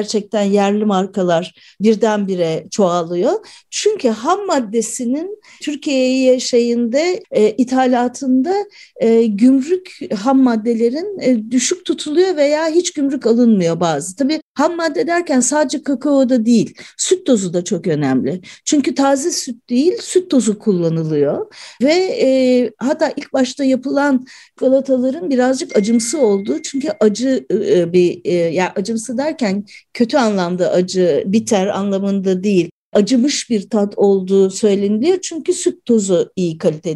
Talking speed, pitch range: 125 wpm, 205-290 Hz